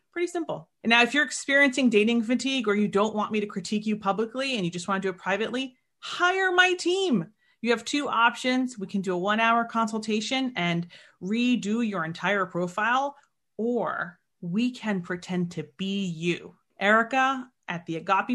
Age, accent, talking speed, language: 30-49, American, 185 wpm, English